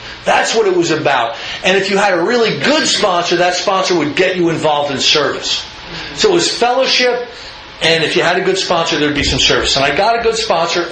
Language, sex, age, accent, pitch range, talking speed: English, male, 40-59, American, 165-225 Hz, 230 wpm